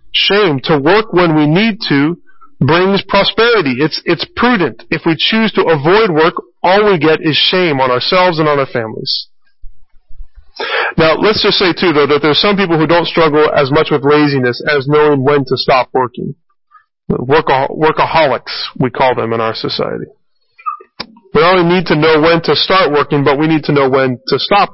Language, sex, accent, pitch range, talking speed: English, male, American, 145-205 Hz, 190 wpm